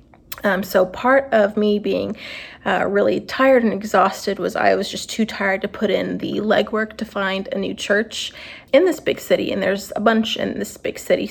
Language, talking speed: English, 205 wpm